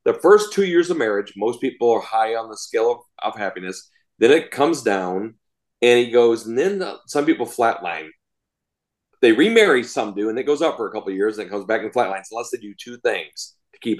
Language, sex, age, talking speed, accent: English, male, 40-59, 235 wpm, American